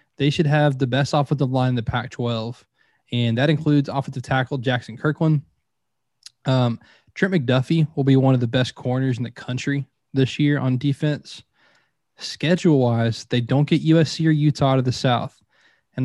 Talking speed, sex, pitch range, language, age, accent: 180 wpm, male, 130-155 Hz, English, 20-39, American